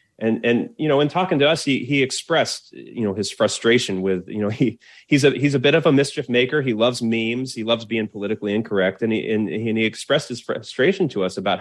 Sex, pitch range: male, 95-115 Hz